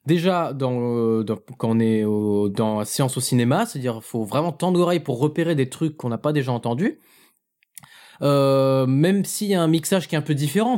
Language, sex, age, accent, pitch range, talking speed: French, male, 20-39, French, 125-165 Hz, 225 wpm